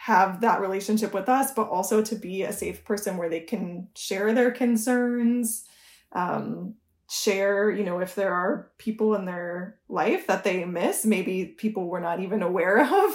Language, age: English, 20-39